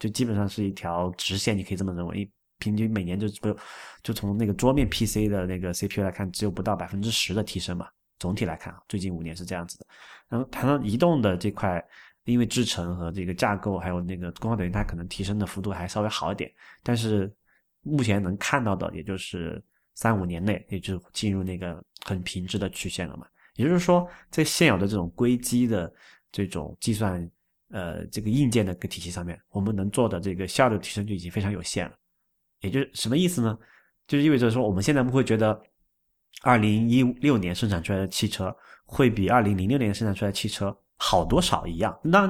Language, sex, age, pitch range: Chinese, male, 20-39, 95-115 Hz